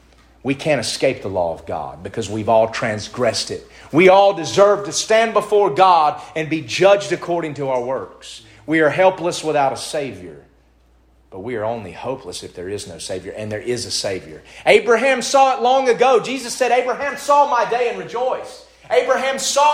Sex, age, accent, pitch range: male, 40-59, American, 135-225 Hz